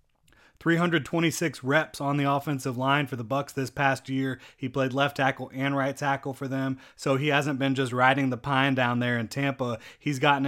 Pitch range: 125-140 Hz